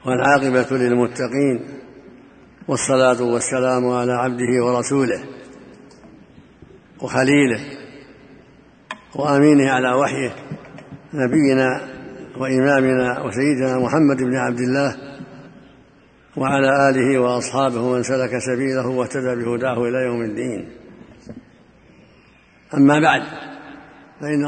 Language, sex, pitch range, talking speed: Arabic, male, 130-150 Hz, 80 wpm